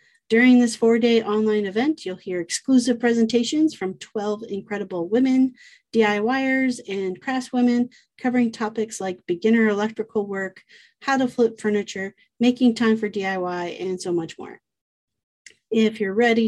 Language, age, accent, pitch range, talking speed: English, 40-59, American, 205-245 Hz, 140 wpm